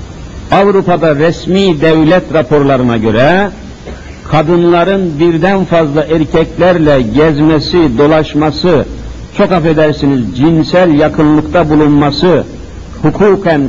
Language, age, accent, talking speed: Turkish, 60-79, native, 75 wpm